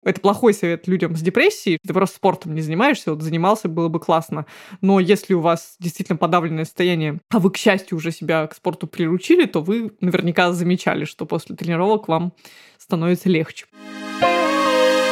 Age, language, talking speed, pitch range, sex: 20-39, Russian, 165 wpm, 170-200 Hz, female